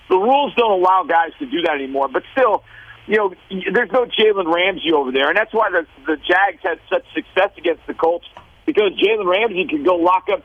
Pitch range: 170-215 Hz